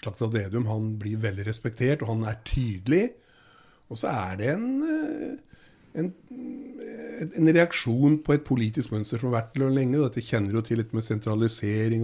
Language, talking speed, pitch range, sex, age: English, 170 wpm, 110-135 Hz, male, 50-69